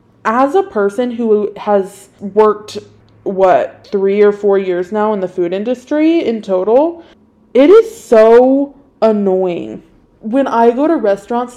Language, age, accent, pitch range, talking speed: English, 20-39, American, 190-245 Hz, 140 wpm